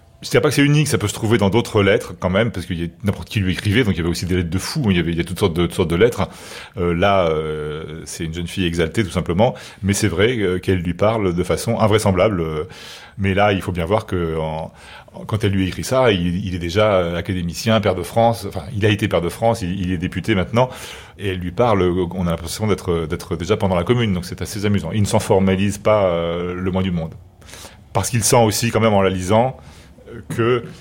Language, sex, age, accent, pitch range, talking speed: French, male, 40-59, French, 90-110 Hz, 260 wpm